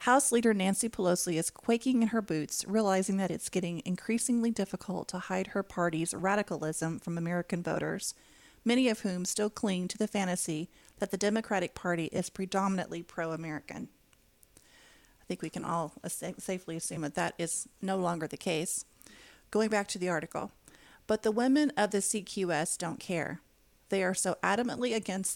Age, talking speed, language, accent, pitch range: 40-59, 165 wpm, English, American, 170-215 Hz